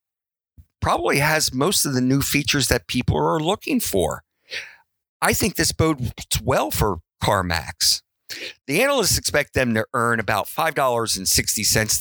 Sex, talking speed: male, 135 wpm